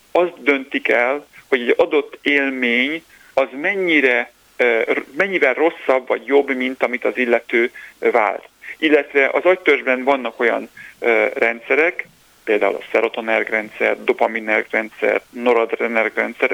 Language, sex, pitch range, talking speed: Hungarian, male, 125-170 Hz, 100 wpm